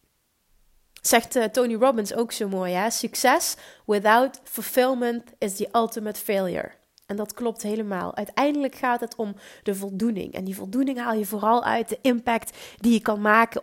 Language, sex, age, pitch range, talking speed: Dutch, female, 30-49, 225-310 Hz, 160 wpm